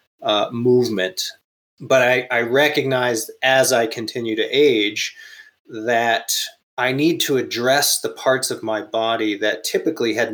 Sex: male